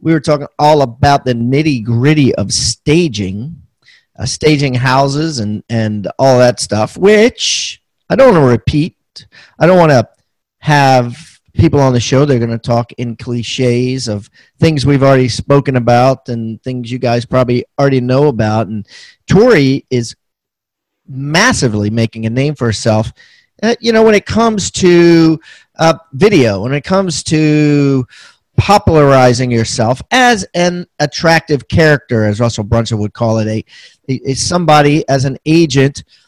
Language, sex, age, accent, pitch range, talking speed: English, male, 40-59, American, 120-155 Hz, 160 wpm